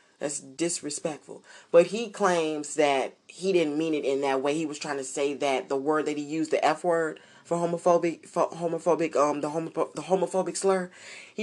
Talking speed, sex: 200 wpm, female